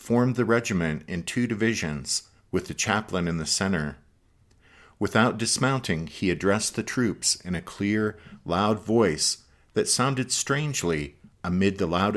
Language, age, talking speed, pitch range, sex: English, 50-69, 145 wpm, 85-115 Hz, male